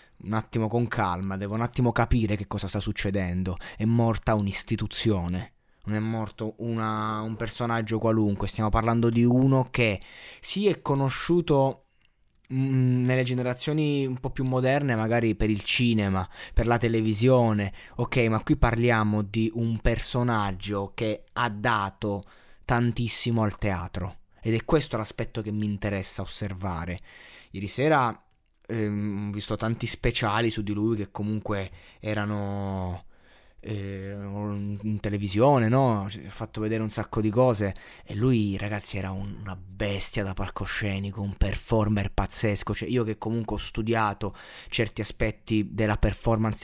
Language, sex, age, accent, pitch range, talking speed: Italian, male, 20-39, native, 105-120 Hz, 135 wpm